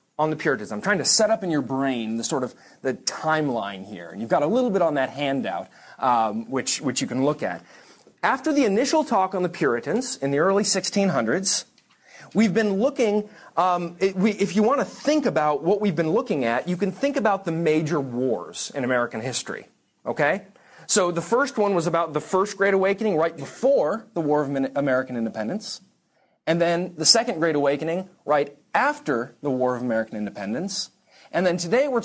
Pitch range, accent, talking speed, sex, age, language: 135-200 Hz, American, 195 wpm, male, 30-49, English